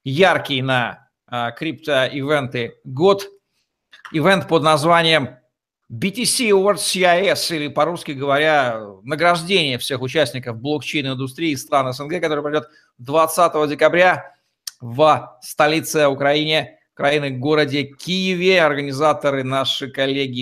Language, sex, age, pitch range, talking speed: Russian, male, 50-69, 140-170 Hz, 105 wpm